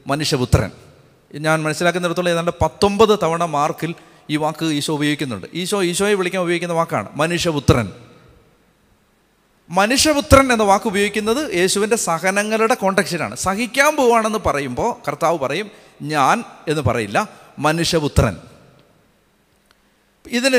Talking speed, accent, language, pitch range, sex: 95 wpm, native, Malayalam, 165-220 Hz, male